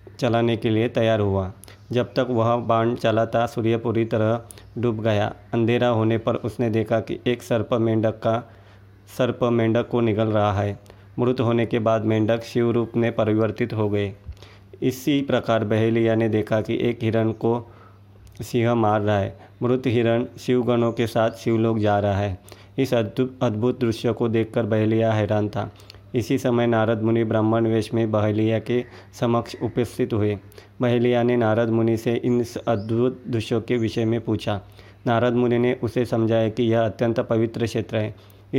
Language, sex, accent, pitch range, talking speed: Hindi, male, native, 110-120 Hz, 170 wpm